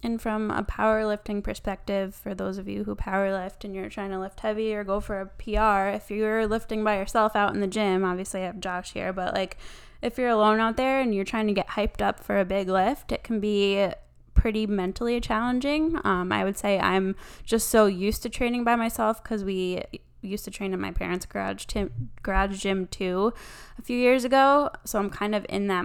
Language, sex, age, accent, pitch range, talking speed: English, female, 10-29, American, 190-220 Hz, 220 wpm